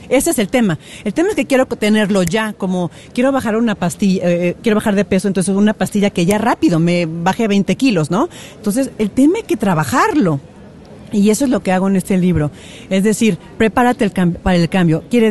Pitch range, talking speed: 180-225 Hz, 210 wpm